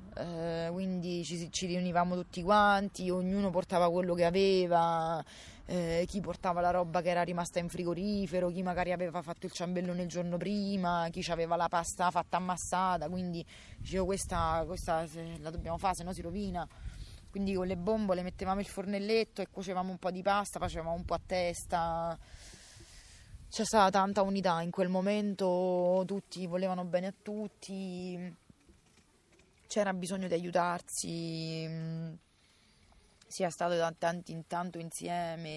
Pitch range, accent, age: 165-195 Hz, native, 20-39